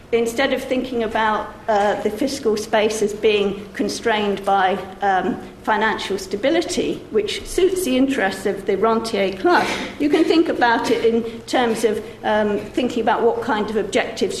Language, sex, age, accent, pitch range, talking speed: English, female, 50-69, British, 205-270 Hz, 160 wpm